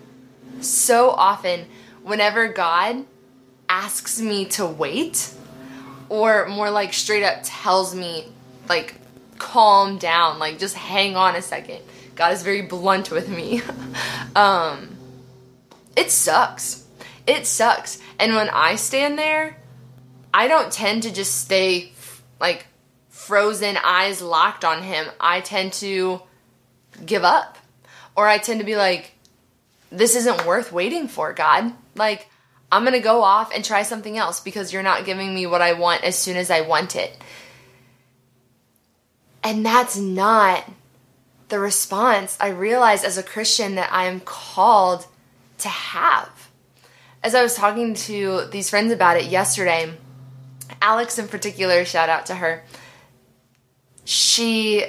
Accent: American